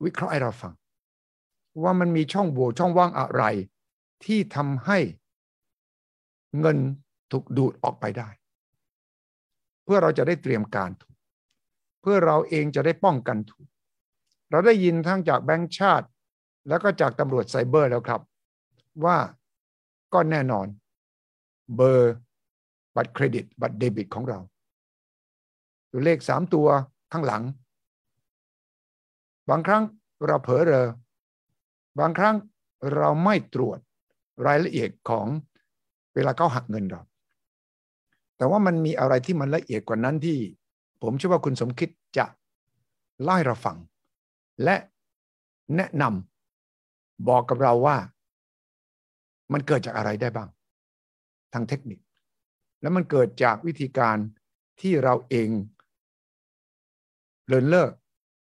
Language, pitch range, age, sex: English, 100-160 Hz, 60-79, male